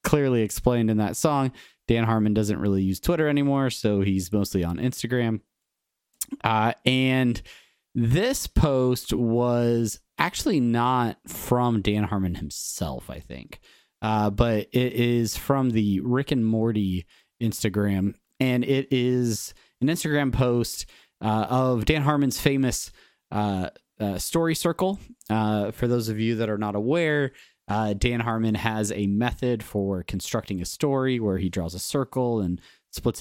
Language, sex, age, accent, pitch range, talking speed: English, male, 30-49, American, 100-125 Hz, 145 wpm